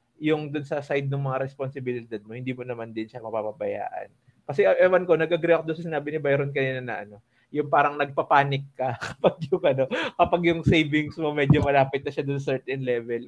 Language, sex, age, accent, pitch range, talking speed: Filipino, male, 20-39, native, 120-145 Hz, 205 wpm